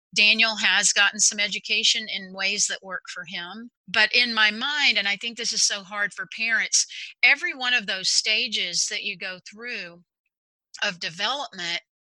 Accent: American